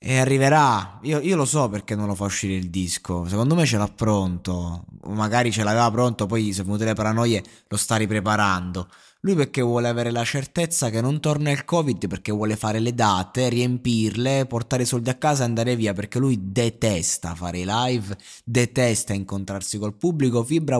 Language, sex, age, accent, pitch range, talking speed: Italian, male, 20-39, native, 100-135 Hz, 195 wpm